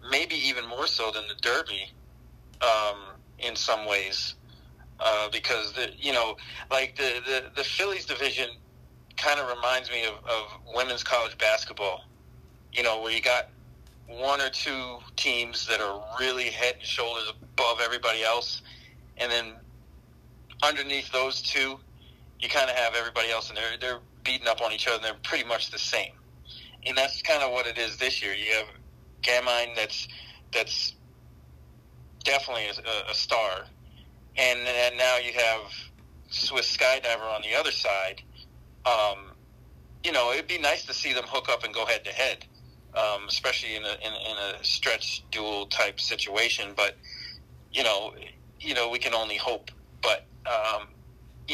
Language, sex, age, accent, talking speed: English, male, 30-49, American, 165 wpm